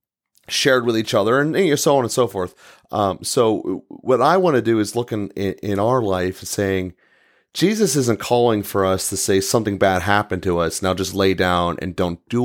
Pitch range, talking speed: 95-115 Hz, 215 wpm